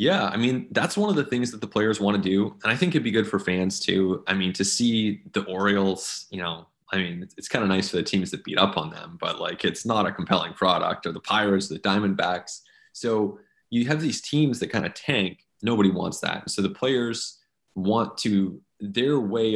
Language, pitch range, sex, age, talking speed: English, 95-120 Hz, male, 20-39, 235 wpm